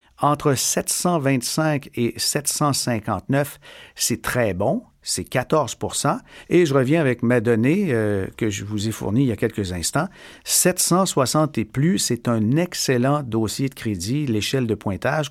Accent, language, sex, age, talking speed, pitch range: Canadian, French, male, 50-69, 150 wpm, 115-155 Hz